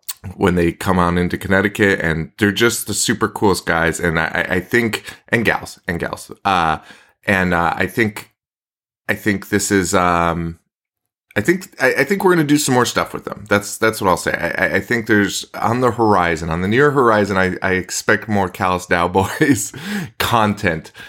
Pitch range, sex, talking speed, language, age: 85-110 Hz, male, 190 wpm, English, 20-39